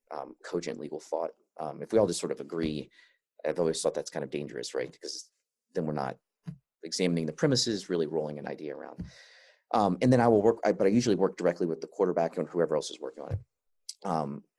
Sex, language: male, English